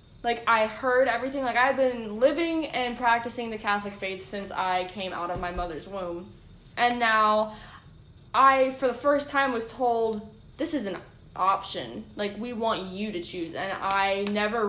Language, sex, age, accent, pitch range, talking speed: English, female, 10-29, American, 195-240 Hz, 175 wpm